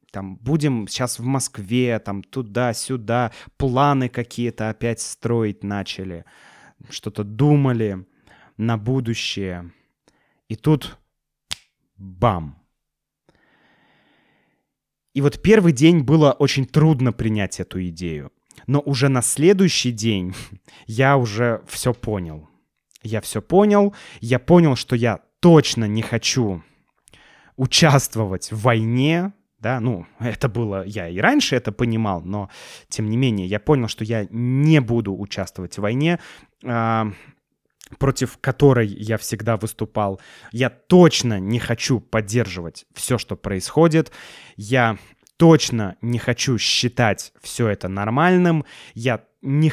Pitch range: 105-135 Hz